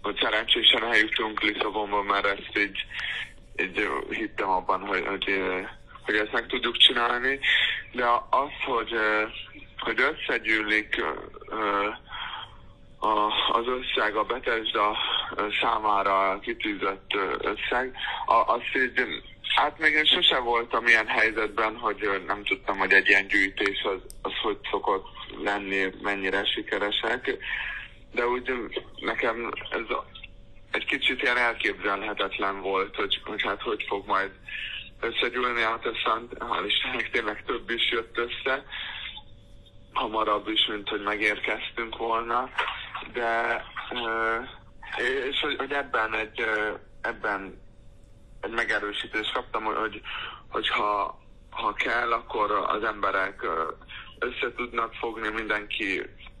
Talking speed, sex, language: 110 wpm, male, Hungarian